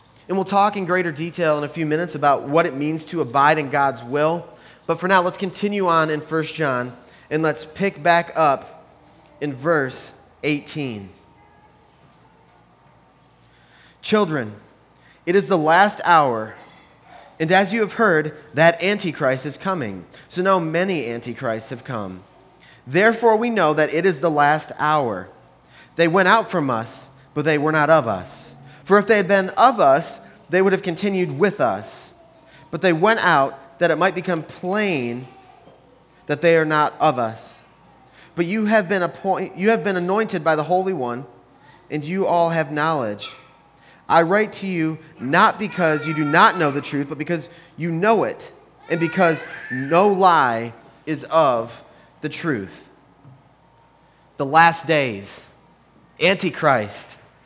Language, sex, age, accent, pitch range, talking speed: English, male, 20-39, American, 145-185 Hz, 160 wpm